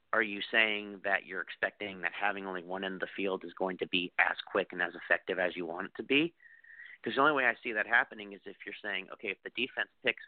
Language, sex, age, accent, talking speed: English, male, 40-59, American, 270 wpm